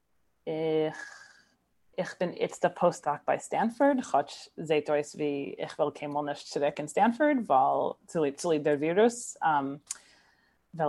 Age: 30-49